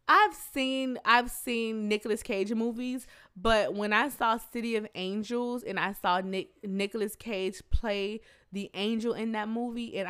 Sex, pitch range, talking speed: female, 180-225 Hz, 160 wpm